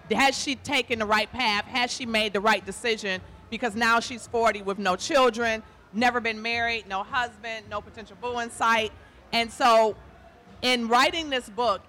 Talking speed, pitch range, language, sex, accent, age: 175 wpm, 205-245 Hz, English, female, American, 40-59